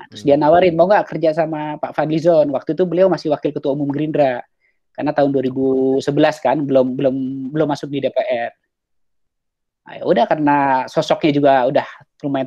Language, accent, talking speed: Indonesian, native, 170 wpm